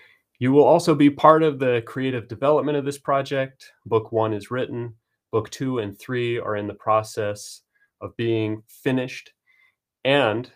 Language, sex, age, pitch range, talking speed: English, male, 30-49, 105-130 Hz, 160 wpm